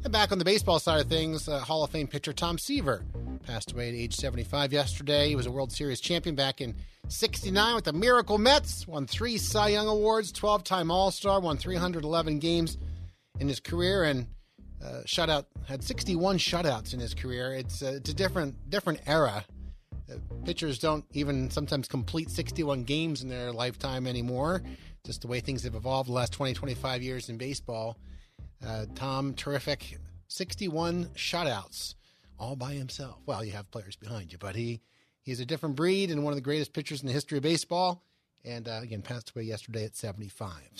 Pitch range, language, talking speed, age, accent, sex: 120-175 Hz, English, 185 wpm, 30-49, American, male